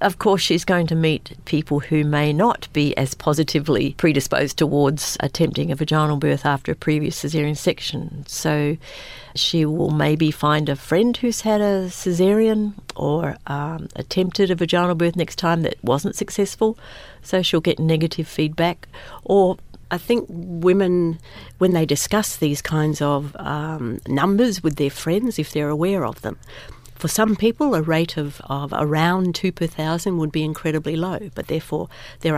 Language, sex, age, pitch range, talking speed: English, female, 60-79, 150-175 Hz, 165 wpm